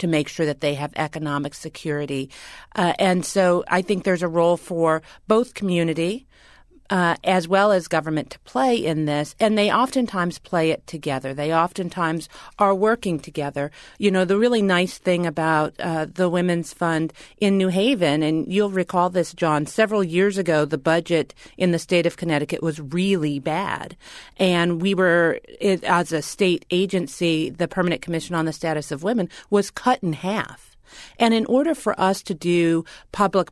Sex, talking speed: female, 175 wpm